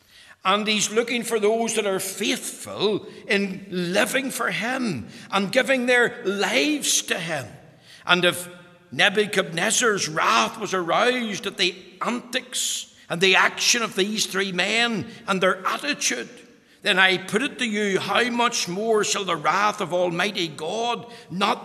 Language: English